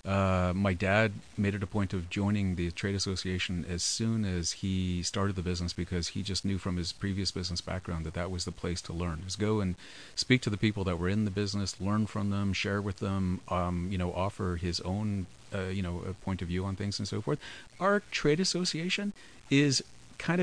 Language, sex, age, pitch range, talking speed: English, male, 40-59, 90-115 Hz, 225 wpm